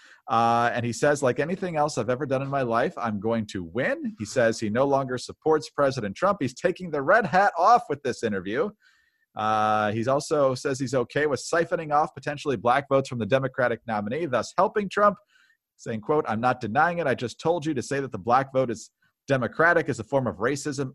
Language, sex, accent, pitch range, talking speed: English, male, American, 120-160 Hz, 220 wpm